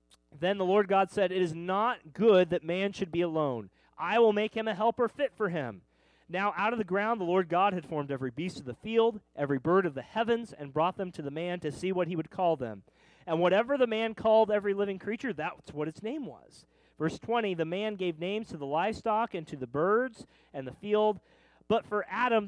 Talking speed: 240 wpm